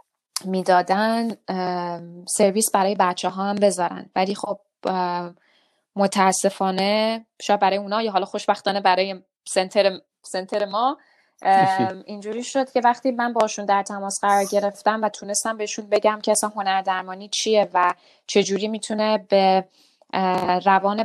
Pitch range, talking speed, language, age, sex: 185-210 Hz, 125 wpm, Persian, 20-39, female